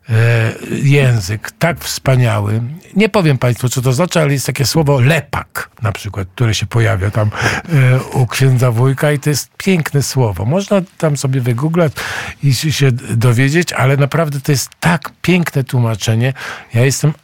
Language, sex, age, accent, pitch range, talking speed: Polish, male, 50-69, native, 120-145 Hz, 155 wpm